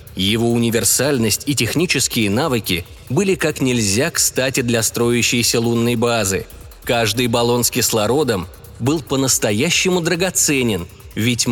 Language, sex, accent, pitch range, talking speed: Russian, male, native, 110-135 Hz, 110 wpm